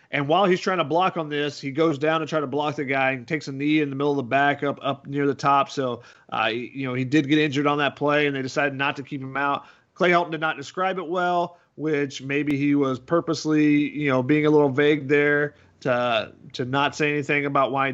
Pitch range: 145-185 Hz